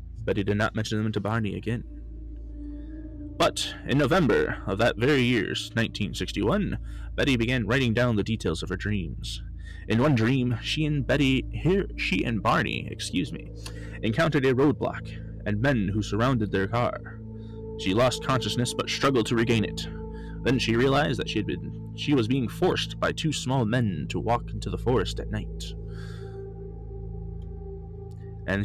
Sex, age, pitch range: male, 20-39, 100-130 Hz